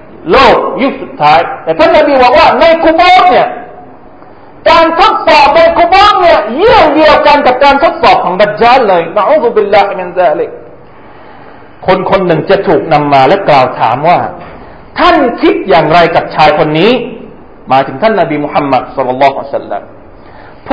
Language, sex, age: Thai, male, 40-59